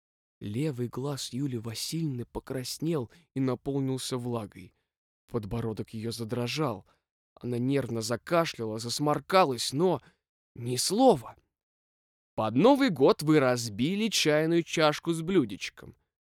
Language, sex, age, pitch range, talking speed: Russian, male, 20-39, 110-175 Hz, 100 wpm